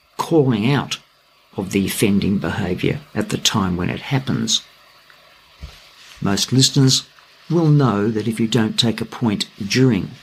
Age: 50-69